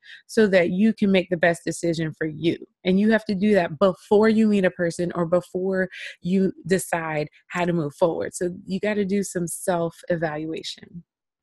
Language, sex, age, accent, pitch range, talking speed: English, female, 20-39, American, 170-210 Hz, 185 wpm